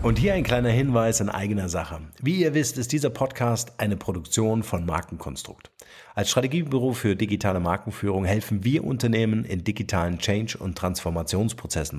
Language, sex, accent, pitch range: German, male, German, 90-120 Hz